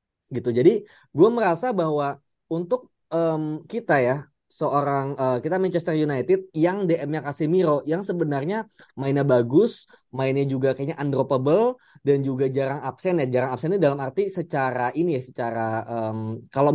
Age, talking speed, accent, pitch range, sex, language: 20-39, 145 wpm, native, 125-170 Hz, male, Indonesian